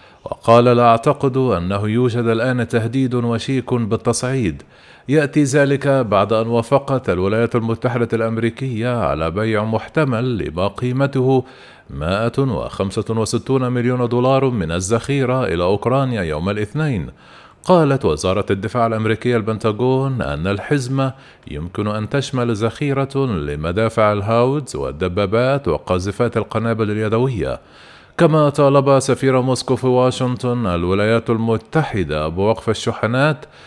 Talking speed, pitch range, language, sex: 105 wpm, 105-130 Hz, Arabic, male